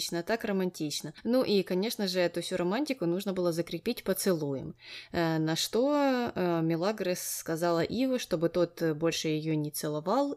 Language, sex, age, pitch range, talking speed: Russian, female, 20-39, 175-225 Hz, 150 wpm